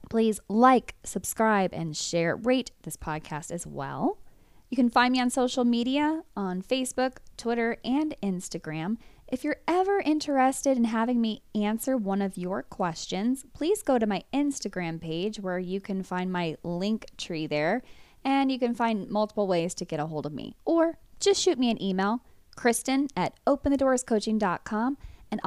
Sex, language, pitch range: female, English, 185-255 Hz